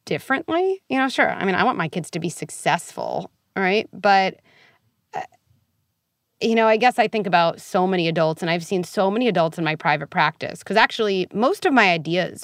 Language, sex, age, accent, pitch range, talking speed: English, female, 30-49, American, 165-215 Hz, 200 wpm